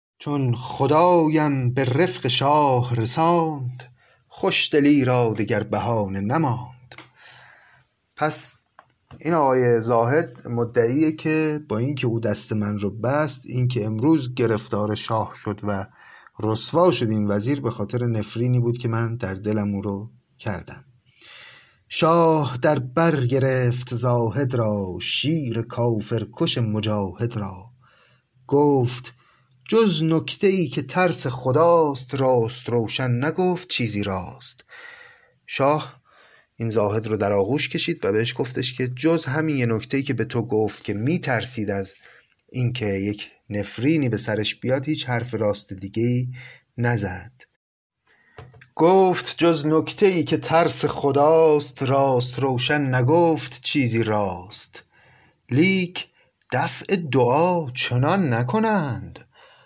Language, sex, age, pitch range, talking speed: Persian, male, 30-49, 115-150 Hz, 120 wpm